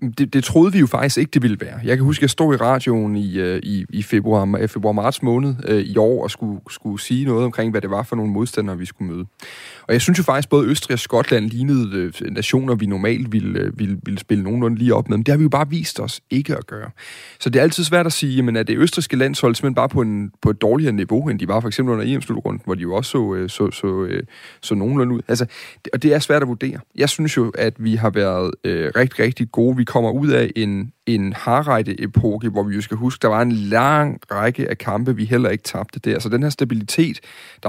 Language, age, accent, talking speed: Danish, 30-49, native, 255 wpm